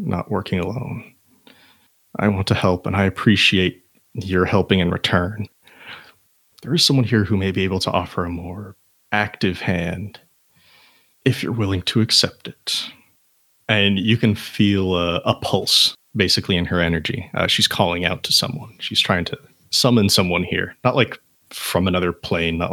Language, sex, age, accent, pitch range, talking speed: English, male, 30-49, American, 85-105 Hz, 165 wpm